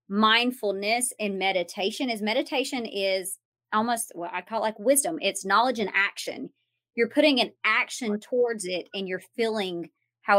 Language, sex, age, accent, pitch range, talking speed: English, male, 30-49, American, 190-245 Hz, 150 wpm